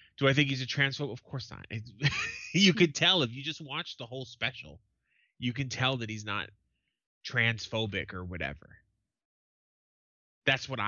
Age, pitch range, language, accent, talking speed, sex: 20-39, 110-145 Hz, English, American, 165 wpm, male